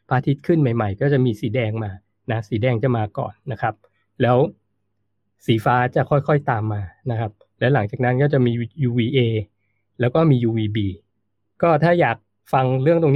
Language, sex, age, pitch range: Thai, male, 20-39, 110-145 Hz